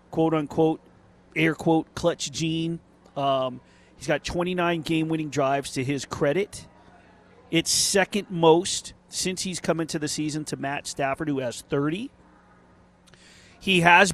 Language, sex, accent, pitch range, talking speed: English, male, American, 135-165 Hz, 125 wpm